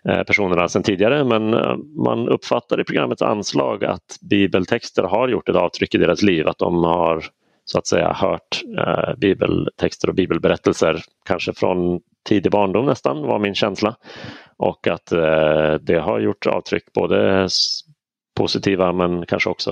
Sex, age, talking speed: male, 30-49, 145 wpm